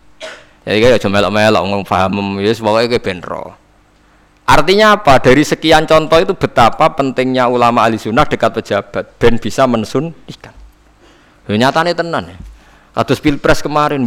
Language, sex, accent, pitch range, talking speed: Indonesian, male, native, 100-150 Hz, 140 wpm